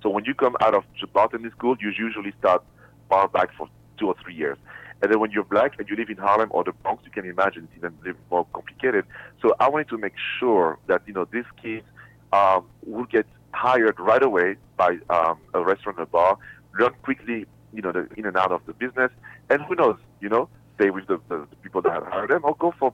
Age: 40-59